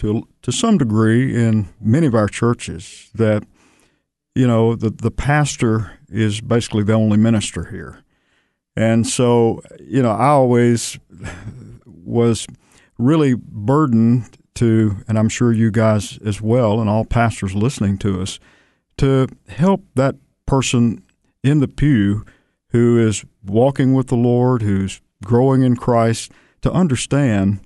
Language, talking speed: English, 135 wpm